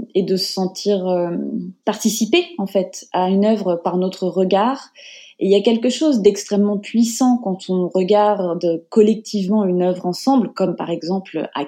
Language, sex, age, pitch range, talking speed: French, female, 20-39, 180-215 Hz, 170 wpm